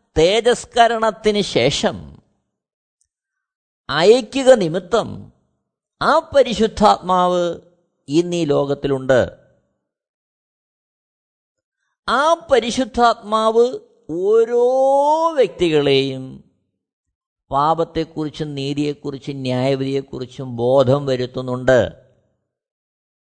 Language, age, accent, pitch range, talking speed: Malayalam, 50-69, native, 145-205 Hz, 45 wpm